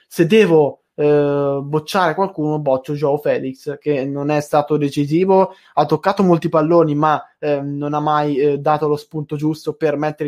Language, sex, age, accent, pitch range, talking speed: Italian, male, 20-39, native, 140-165 Hz, 170 wpm